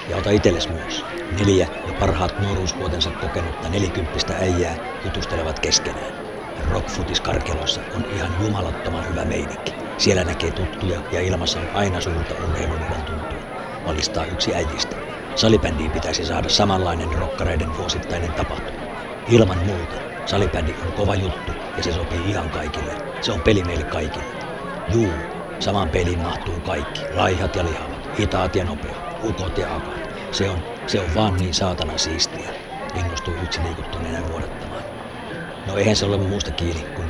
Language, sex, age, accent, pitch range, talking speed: Finnish, male, 60-79, native, 80-95 Hz, 135 wpm